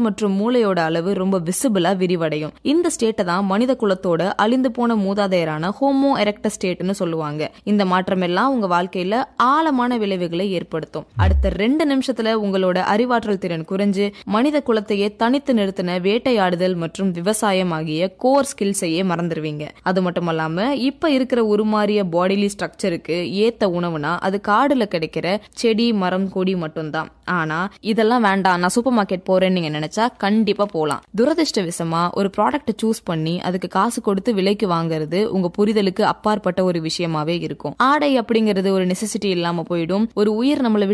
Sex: female